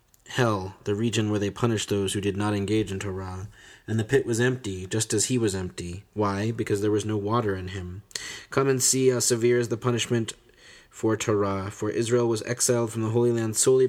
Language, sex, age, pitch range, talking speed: English, male, 30-49, 100-120 Hz, 215 wpm